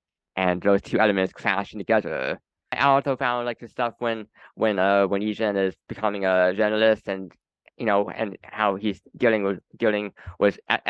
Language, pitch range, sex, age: English, 100-125 Hz, male, 10-29